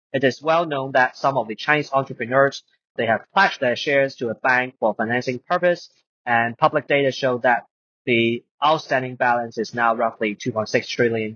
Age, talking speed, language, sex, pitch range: 30-49, 180 wpm, English, male, 120-155 Hz